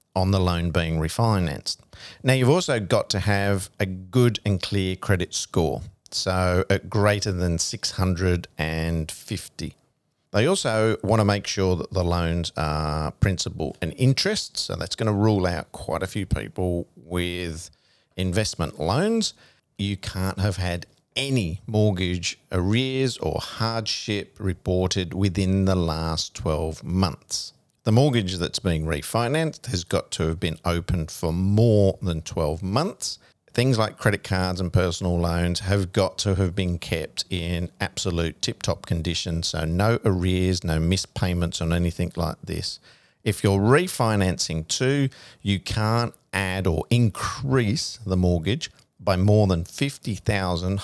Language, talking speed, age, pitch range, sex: English, 145 wpm, 50-69, 85-105 Hz, male